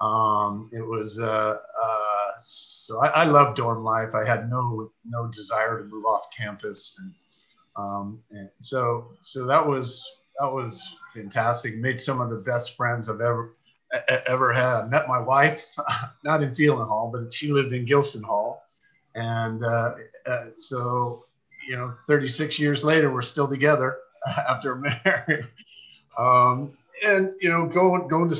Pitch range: 110-140 Hz